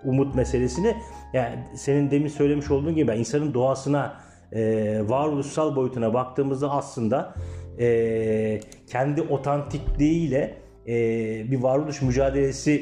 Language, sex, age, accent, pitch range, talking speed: Turkish, male, 40-59, native, 120-150 Hz, 90 wpm